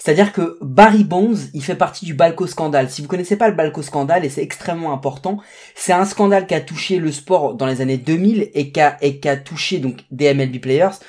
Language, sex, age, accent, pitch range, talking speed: French, male, 20-39, French, 150-210 Hz, 215 wpm